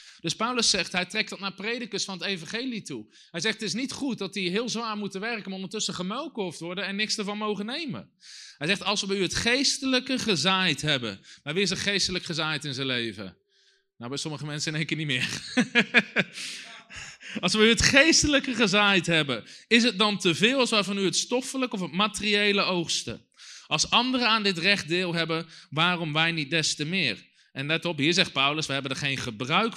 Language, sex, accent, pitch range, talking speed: Dutch, male, Dutch, 160-210 Hz, 220 wpm